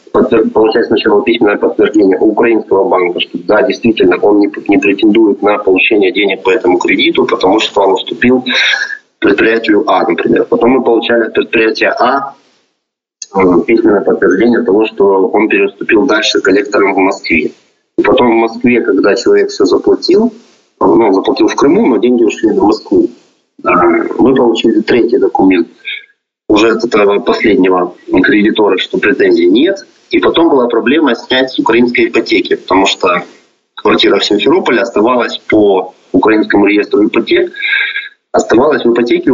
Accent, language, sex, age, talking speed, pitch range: native, Russian, male, 30-49, 145 wpm, 240-390 Hz